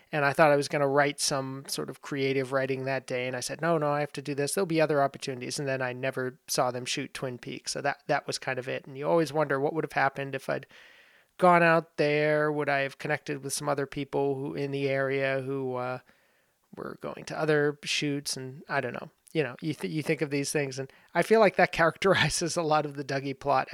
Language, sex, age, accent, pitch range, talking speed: English, male, 30-49, American, 135-155 Hz, 260 wpm